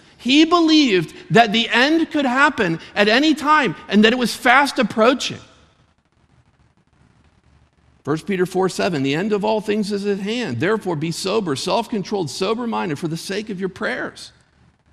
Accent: American